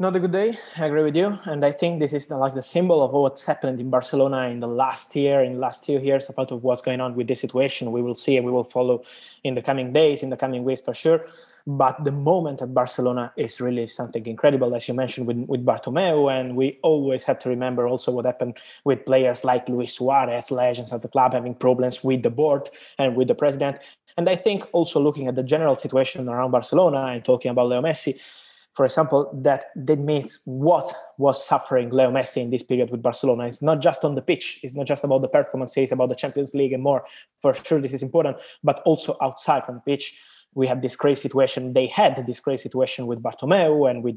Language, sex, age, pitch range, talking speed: English, male, 20-39, 125-145 Hz, 235 wpm